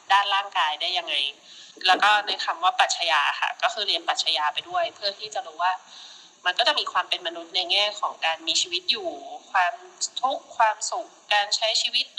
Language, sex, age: Thai, female, 20-39